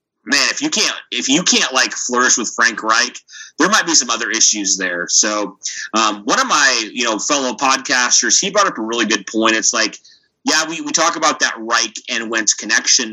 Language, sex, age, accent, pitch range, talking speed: English, male, 30-49, American, 110-175 Hz, 215 wpm